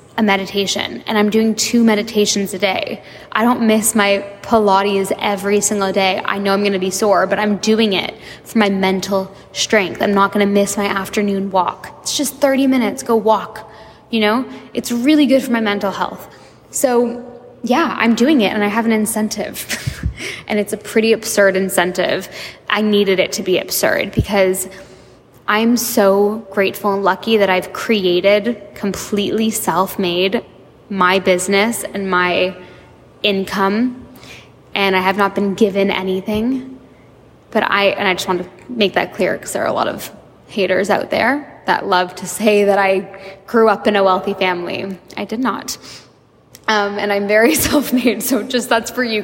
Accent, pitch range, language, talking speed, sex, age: American, 195-225 Hz, English, 175 wpm, female, 10-29